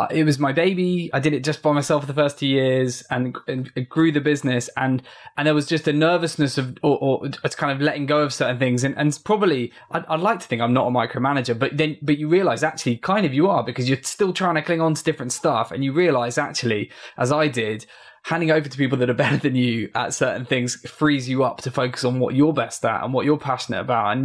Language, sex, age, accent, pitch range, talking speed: English, male, 10-29, British, 125-150 Hz, 265 wpm